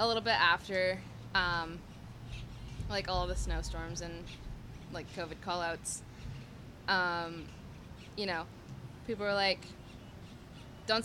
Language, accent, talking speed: English, American, 105 wpm